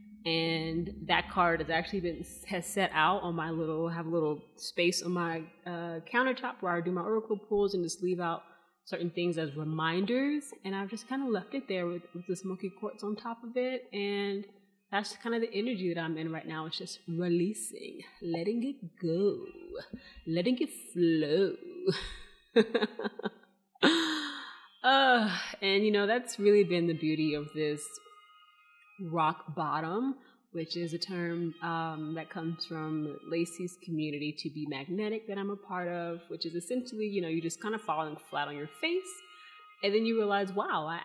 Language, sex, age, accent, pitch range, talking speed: English, female, 30-49, American, 165-210 Hz, 175 wpm